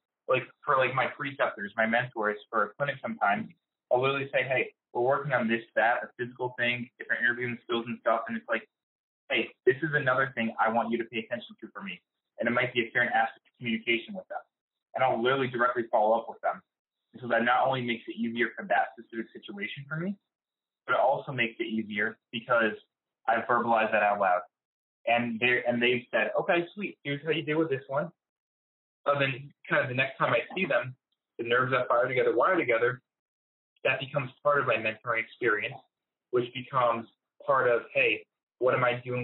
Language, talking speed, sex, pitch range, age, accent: English, 210 wpm, male, 115-145 Hz, 20-39, American